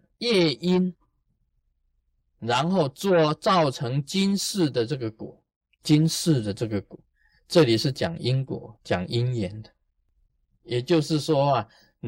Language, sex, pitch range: Chinese, male, 95-155 Hz